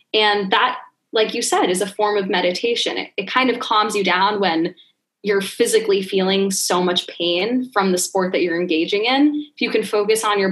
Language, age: English, 10-29